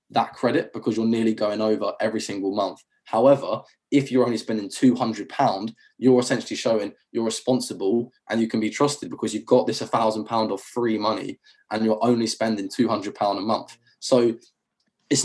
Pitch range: 110-125 Hz